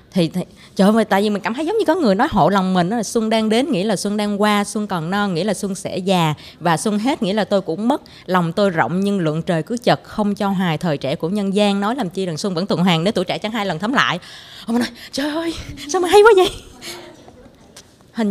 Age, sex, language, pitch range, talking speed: 20-39, female, Vietnamese, 180-230 Hz, 275 wpm